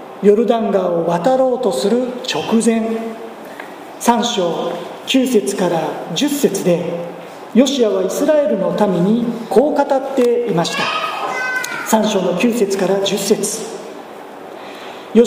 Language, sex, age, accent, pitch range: Japanese, male, 40-59, native, 200-250 Hz